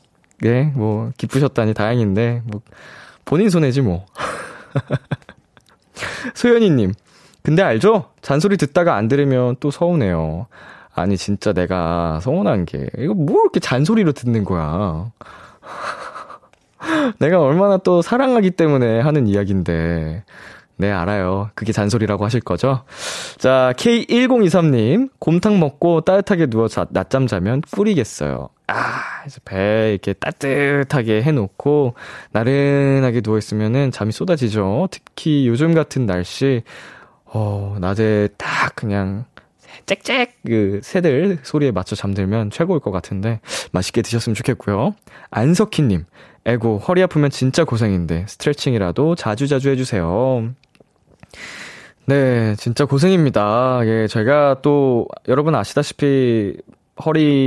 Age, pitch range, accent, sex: 20-39, 105-150 Hz, native, male